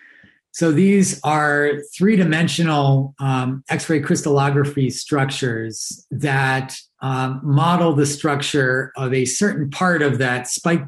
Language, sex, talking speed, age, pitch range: English, male, 105 wpm, 40-59, 125-150 Hz